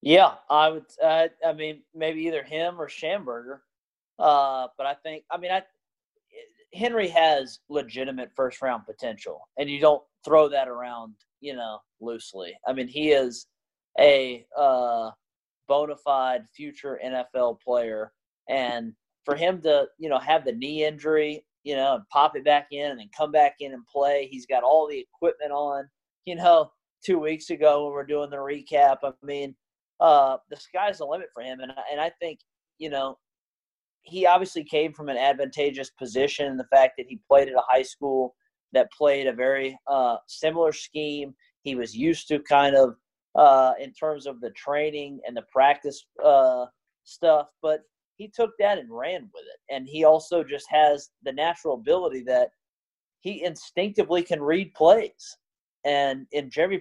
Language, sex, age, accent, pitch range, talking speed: English, male, 30-49, American, 135-165 Hz, 175 wpm